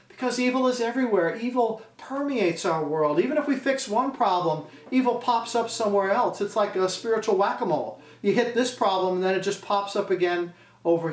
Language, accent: English, American